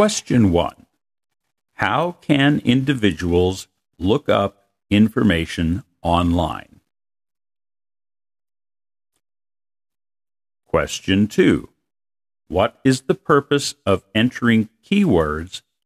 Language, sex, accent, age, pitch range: Japanese, male, American, 50-69, 95-130 Hz